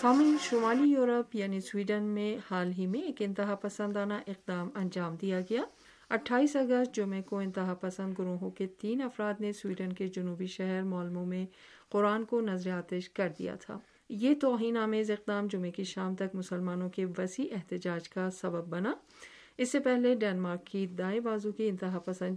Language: Urdu